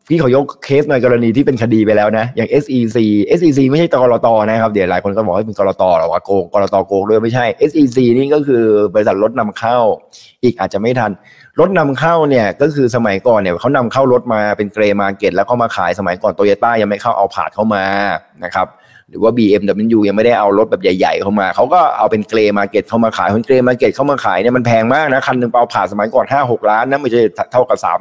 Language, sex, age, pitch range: Thai, male, 20-39, 105-130 Hz